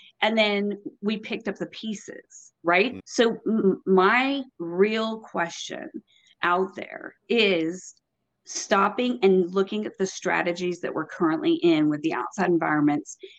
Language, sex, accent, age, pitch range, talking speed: English, female, American, 40-59, 180-230 Hz, 130 wpm